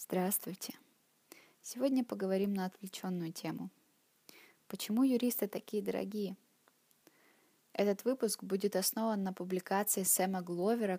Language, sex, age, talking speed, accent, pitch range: Russian, female, 20-39, 100 wpm, native, 185-215 Hz